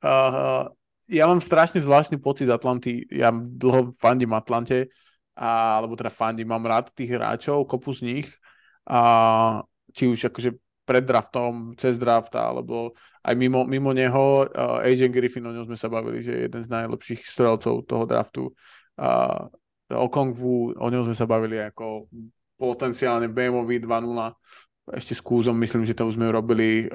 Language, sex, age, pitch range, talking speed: Slovak, male, 20-39, 115-135 Hz, 160 wpm